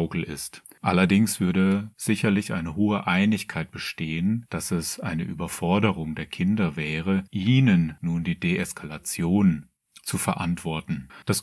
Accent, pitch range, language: German, 80-110 Hz, German